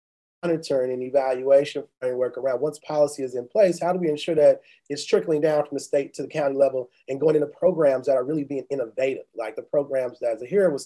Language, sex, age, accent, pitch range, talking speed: English, male, 30-49, American, 135-170 Hz, 220 wpm